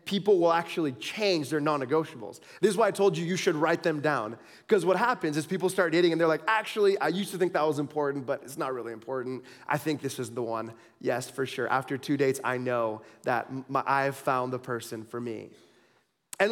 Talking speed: 230 wpm